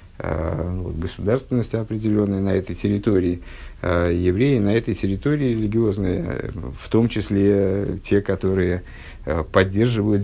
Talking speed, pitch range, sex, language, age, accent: 95 wpm, 90-110 Hz, male, Russian, 50-69, native